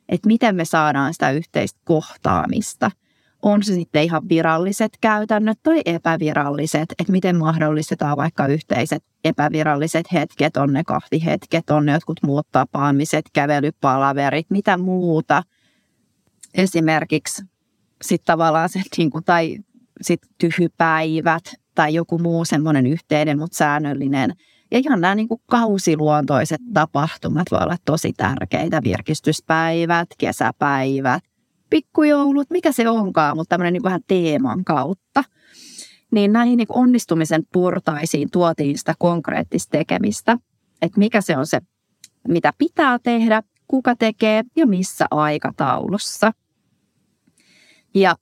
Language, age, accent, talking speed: Finnish, 30-49, native, 115 wpm